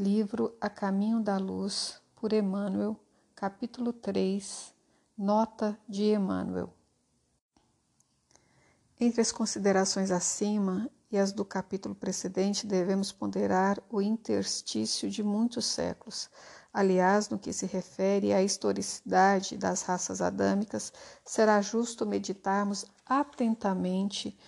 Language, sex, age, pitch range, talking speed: Portuguese, female, 60-79, 190-220 Hz, 105 wpm